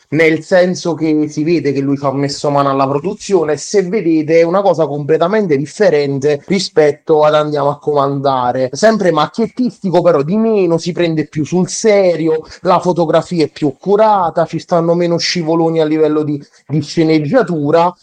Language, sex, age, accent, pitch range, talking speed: Italian, male, 30-49, native, 140-165 Hz, 160 wpm